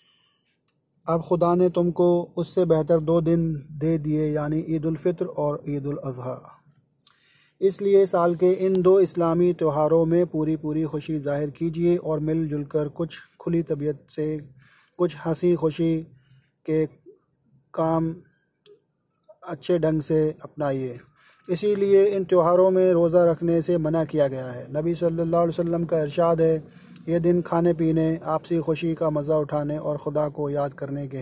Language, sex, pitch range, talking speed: Hindi, male, 150-170 Hz, 140 wpm